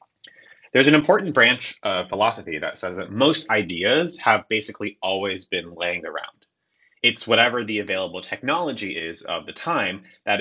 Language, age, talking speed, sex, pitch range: English, 30-49, 155 wpm, male, 105-155 Hz